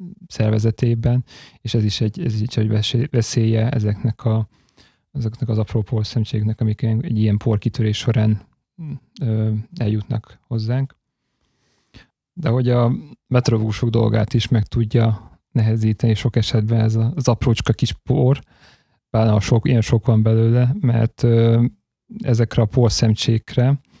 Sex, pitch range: male, 110-120 Hz